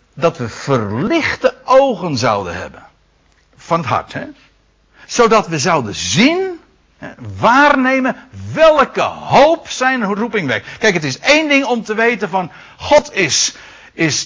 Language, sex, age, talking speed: Dutch, male, 60-79, 130 wpm